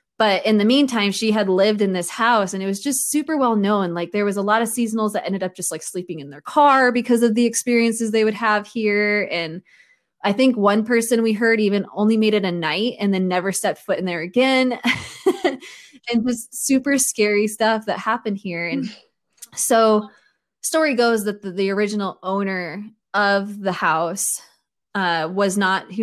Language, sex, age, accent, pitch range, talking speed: English, female, 20-39, American, 185-225 Hz, 200 wpm